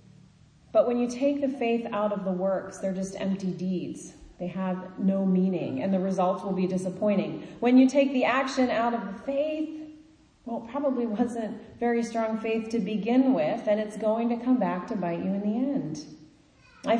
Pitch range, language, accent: 180-230 Hz, English, American